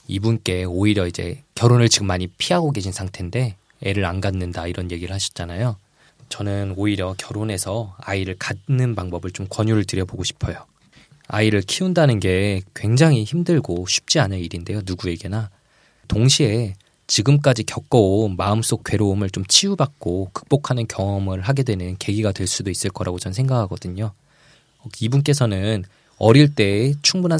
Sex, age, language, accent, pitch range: male, 20-39, Korean, native, 95-130 Hz